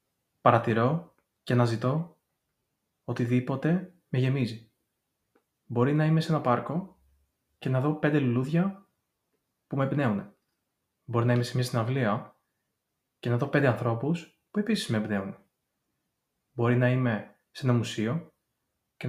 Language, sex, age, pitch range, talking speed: Greek, male, 20-39, 115-150 Hz, 135 wpm